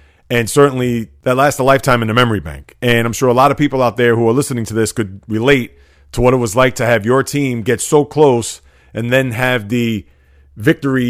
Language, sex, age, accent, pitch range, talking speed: English, male, 30-49, American, 110-135 Hz, 230 wpm